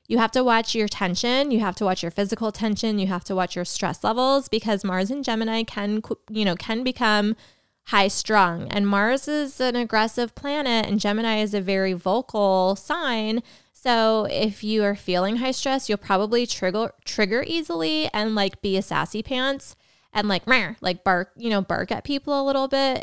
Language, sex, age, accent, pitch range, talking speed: English, female, 20-39, American, 200-250 Hz, 195 wpm